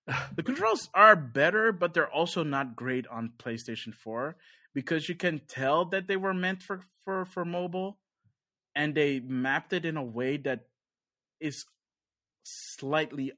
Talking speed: 150 wpm